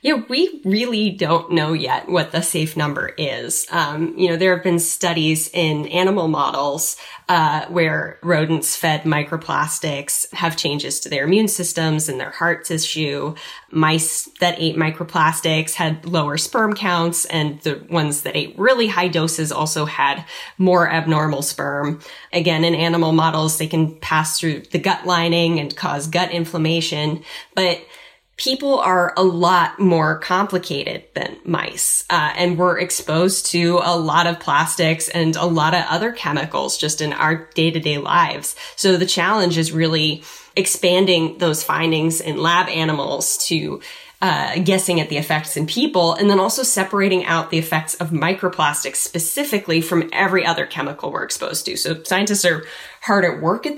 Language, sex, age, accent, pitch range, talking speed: English, female, 10-29, American, 155-180 Hz, 160 wpm